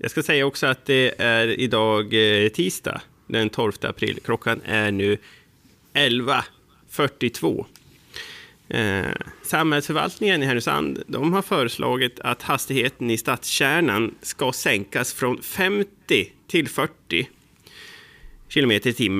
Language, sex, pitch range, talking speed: Swedish, male, 110-135 Hz, 110 wpm